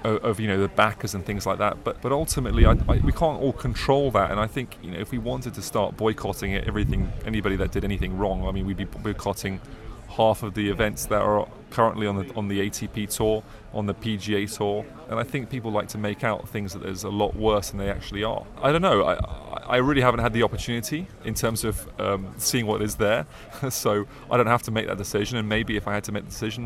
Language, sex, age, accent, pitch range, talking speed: English, male, 30-49, British, 95-110 Hz, 250 wpm